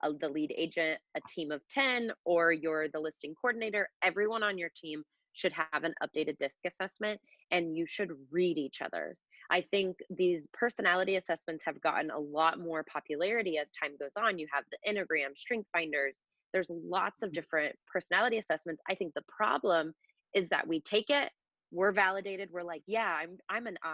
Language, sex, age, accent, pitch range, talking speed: English, female, 20-39, American, 160-205 Hz, 185 wpm